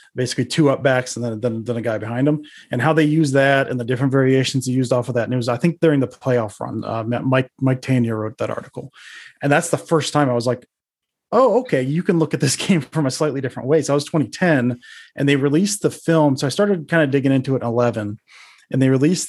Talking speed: 265 wpm